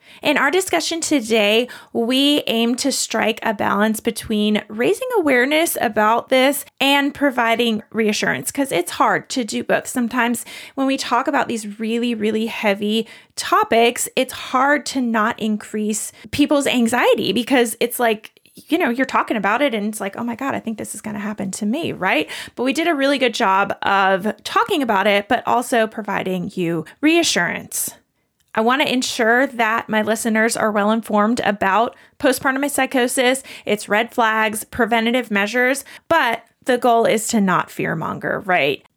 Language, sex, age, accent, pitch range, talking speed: English, female, 20-39, American, 215-270 Hz, 165 wpm